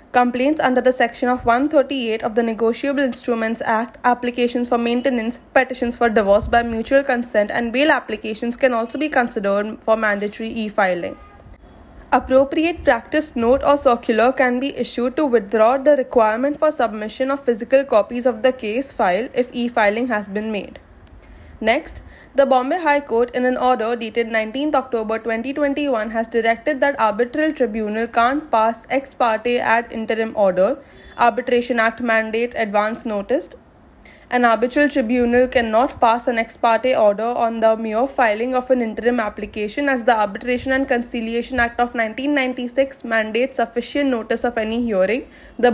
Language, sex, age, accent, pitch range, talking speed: English, female, 20-39, Indian, 225-260 Hz, 155 wpm